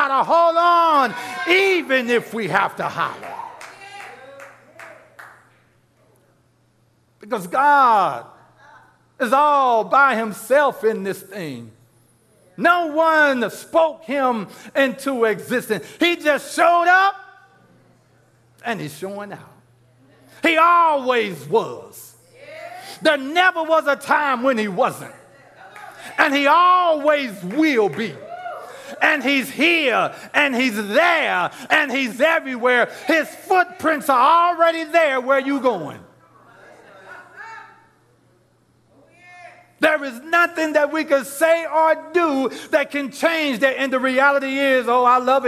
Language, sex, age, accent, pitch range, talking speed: English, male, 60-79, American, 245-325 Hz, 115 wpm